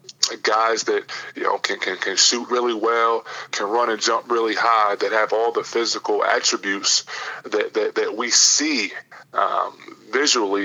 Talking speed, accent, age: 165 wpm, American, 20-39